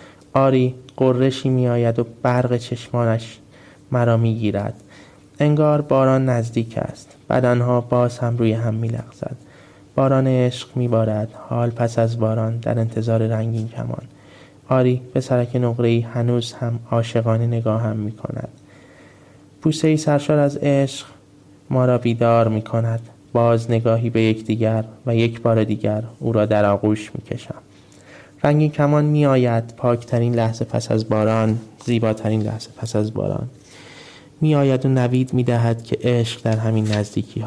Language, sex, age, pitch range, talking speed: English, male, 20-39, 110-130 Hz, 145 wpm